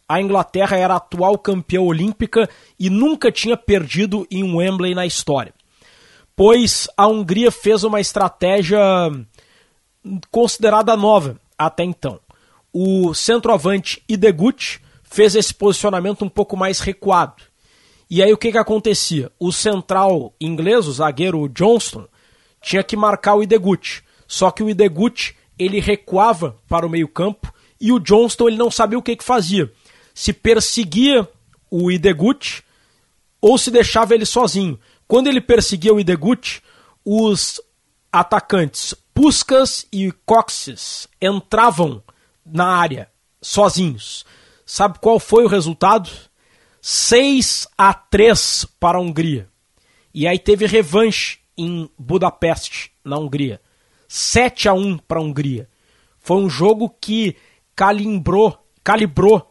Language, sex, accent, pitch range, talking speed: Portuguese, male, Brazilian, 175-220 Hz, 125 wpm